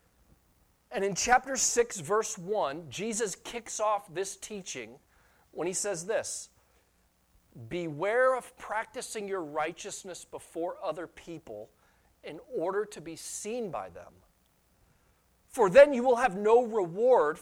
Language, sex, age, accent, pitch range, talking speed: English, male, 40-59, American, 165-225 Hz, 130 wpm